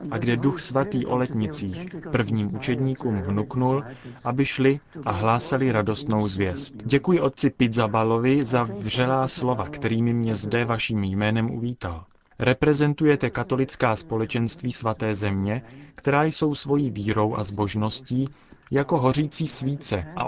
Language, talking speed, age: Czech, 120 wpm, 30-49